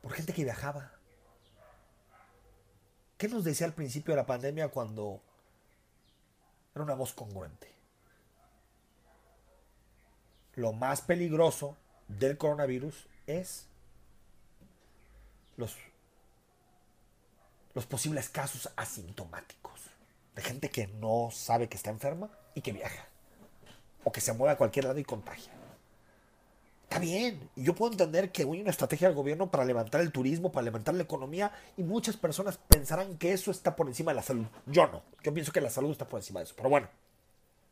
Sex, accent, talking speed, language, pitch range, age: male, Mexican, 150 wpm, Spanish, 110-170 Hz, 40-59